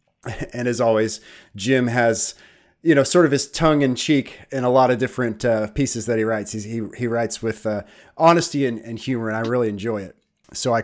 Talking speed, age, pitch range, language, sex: 220 wpm, 30-49, 110-135 Hz, English, male